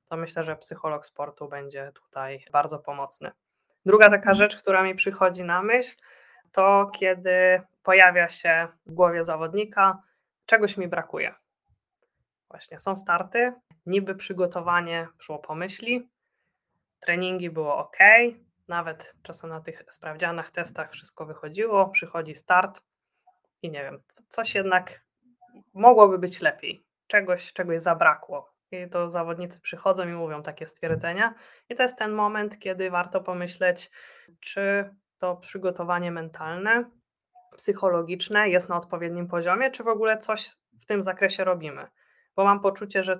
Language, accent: Polish, native